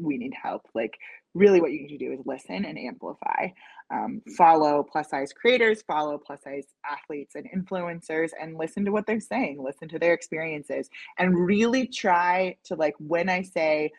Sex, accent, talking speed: female, American, 185 wpm